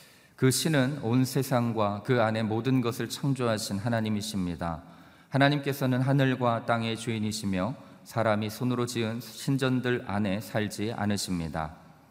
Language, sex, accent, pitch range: Korean, male, native, 90-115 Hz